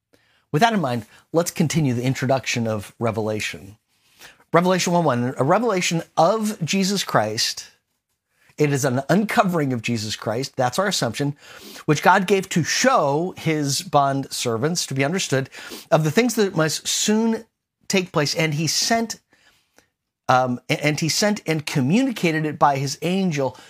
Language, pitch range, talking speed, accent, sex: English, 135-185 Hz, 150 wpm, American, male